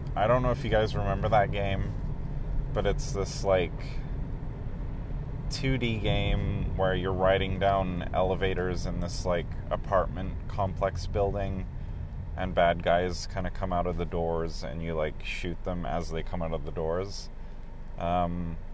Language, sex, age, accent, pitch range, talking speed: English, male, 30-49, American, 85-110 Hz, 155 wpm